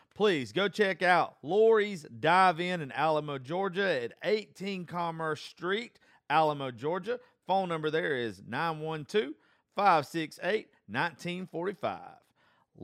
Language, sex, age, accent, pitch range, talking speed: English, male, 40-59, American, 95-150 Hz, 95 wpm